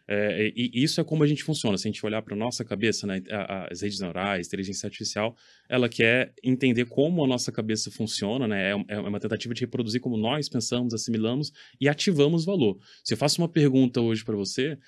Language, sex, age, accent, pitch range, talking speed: Portuguese, male, 20-39, Brazilian, 110-135 Hz, 205 wpm